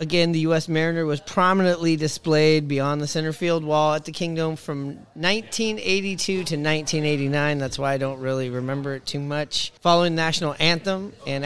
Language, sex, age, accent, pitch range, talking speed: English, male, 30-49, American, 140-165 Hz, 175 wpm